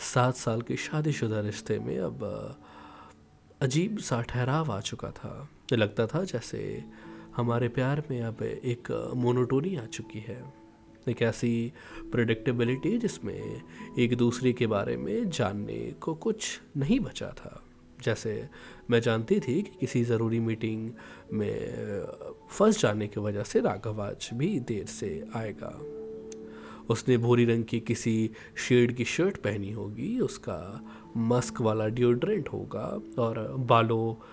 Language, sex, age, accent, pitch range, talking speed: Hindi, male, 20-39, native, 110-130 Hz, 135 wpm